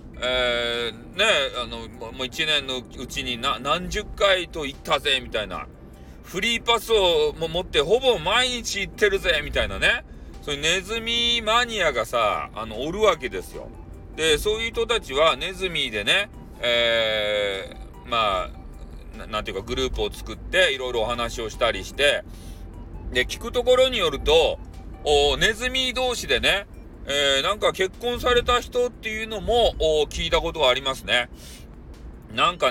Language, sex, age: Japanese, male, 40-59